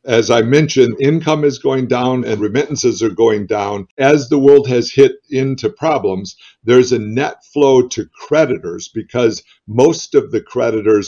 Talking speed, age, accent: 165 wpm, 50-69, American